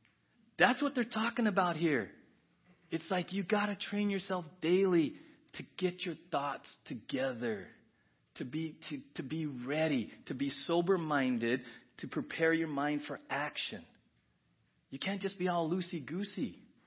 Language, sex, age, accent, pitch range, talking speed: English, male, 40-59, American, 145-215 Hz, 140 wpm